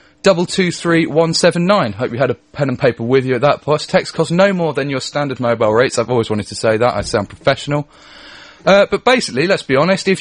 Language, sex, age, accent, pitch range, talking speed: English, male, 30-49, British, 130-165 Hz, 255 wpm